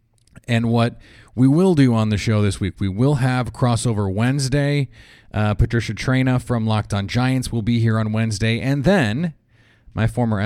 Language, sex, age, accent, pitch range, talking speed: English, male, 30-49, American, 110-125 Hz, 180 wpm